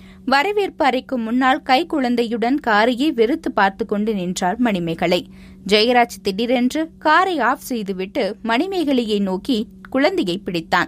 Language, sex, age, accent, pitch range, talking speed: Tamil, female, 20-39, native, 195-275 Hz, 100 wpm